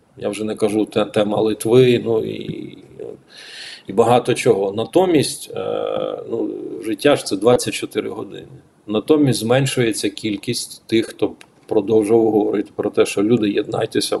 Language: Ukrainian